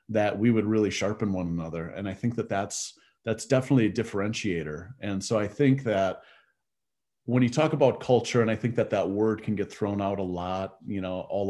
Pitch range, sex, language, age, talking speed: 95-115 Hz, male, English, 30-49, 215 wpm